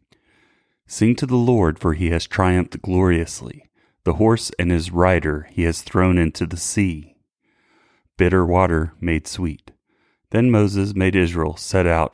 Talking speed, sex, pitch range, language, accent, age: 150 wpm, male, 85-100 Hz, English, American, 30-49